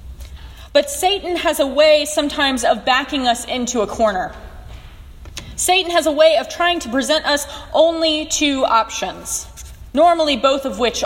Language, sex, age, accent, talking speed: English, female, 20-39, American, 150 wpm